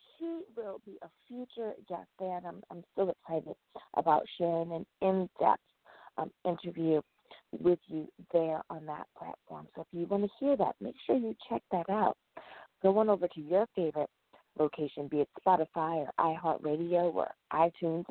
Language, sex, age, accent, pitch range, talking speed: English, female, 40-59, American, 160-205 Hz, 170 wpm